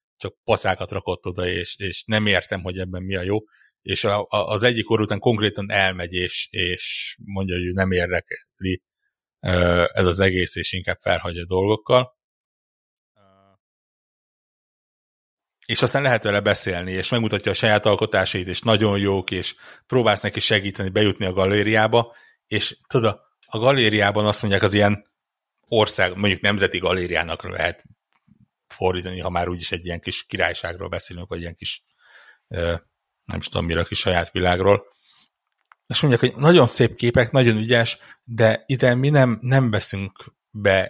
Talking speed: 155 wpm